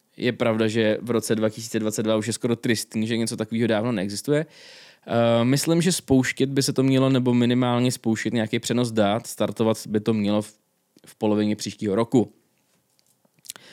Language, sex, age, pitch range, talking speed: Czech, male, 20-39, 110-155 Hz, 155 wpm